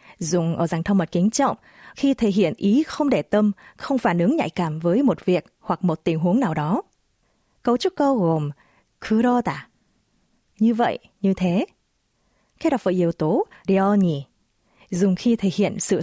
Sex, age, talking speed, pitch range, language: female, 20-39, 185 wpm, 175-245 Hz, Vietnamese